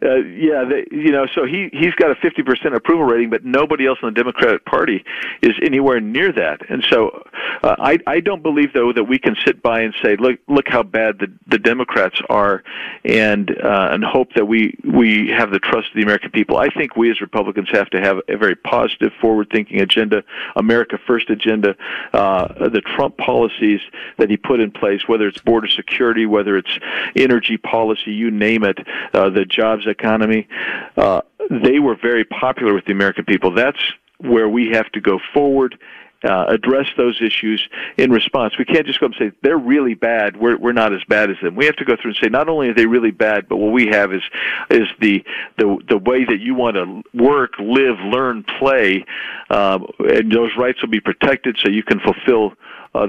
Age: 50-69